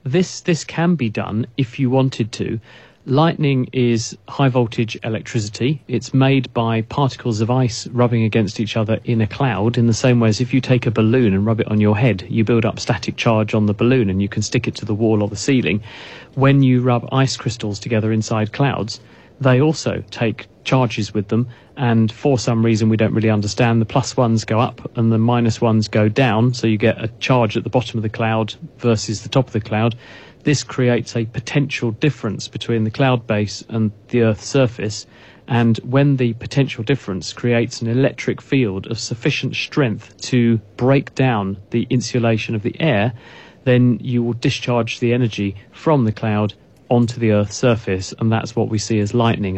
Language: English